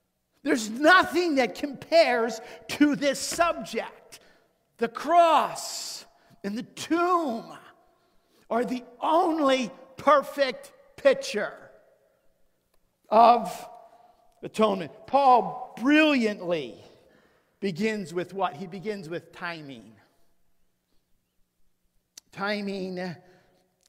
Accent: American